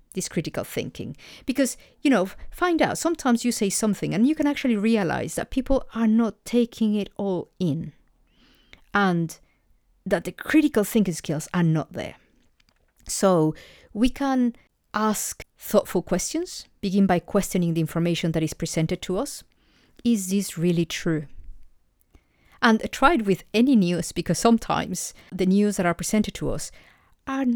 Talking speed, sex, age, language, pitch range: 150 wpm, female, 40-59, English, 165-230 Hz